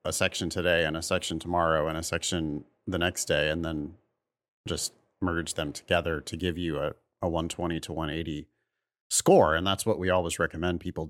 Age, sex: 30-49, male